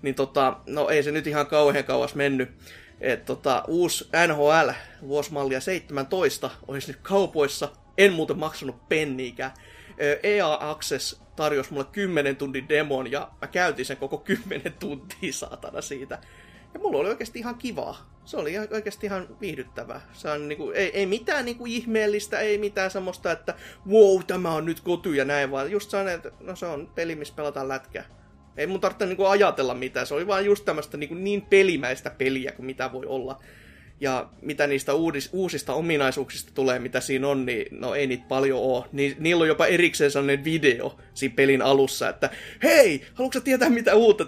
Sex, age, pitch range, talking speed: male, 30-49, 135-195 Hz, 180 wpm